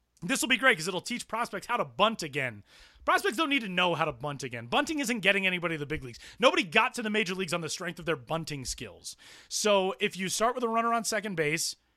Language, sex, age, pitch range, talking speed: English, male, 30-49, 145-190 Hz, 260 wpm